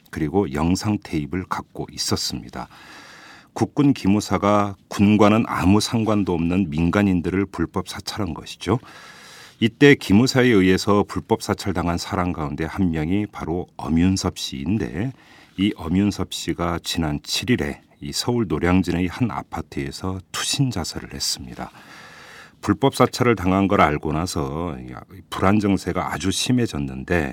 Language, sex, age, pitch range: Korean, male, 40-59, 80-100 Hz